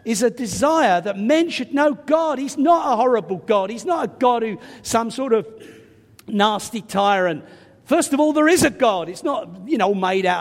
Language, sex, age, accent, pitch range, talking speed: English, male, 50-69, British, 195-300 Hz, 210 wpm